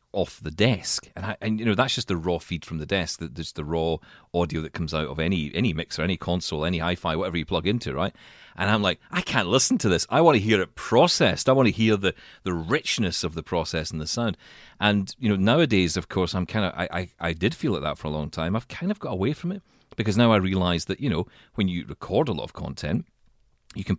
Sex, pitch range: male, 80-110 Hz